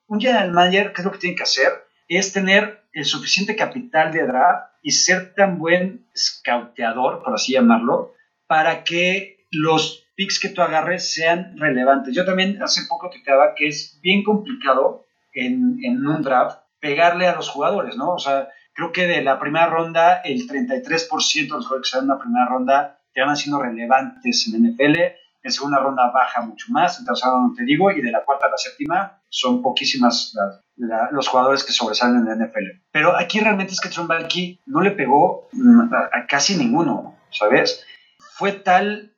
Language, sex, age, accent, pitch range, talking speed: Spanish, male, 40-59, Mexican, 140-225 Hz, 190 wpm